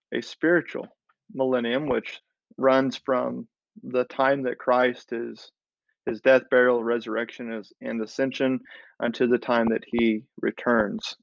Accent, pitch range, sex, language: American, 120-140 Hz, male, English